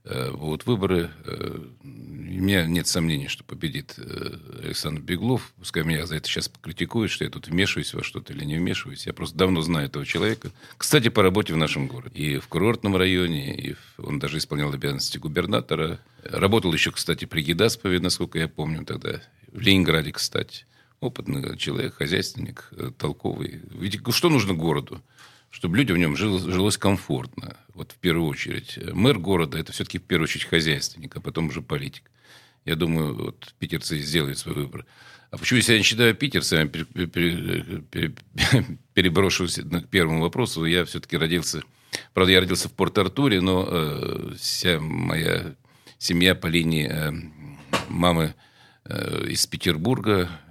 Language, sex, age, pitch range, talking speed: Russian, male, 50-69, 80-100 Hz, 150 wpm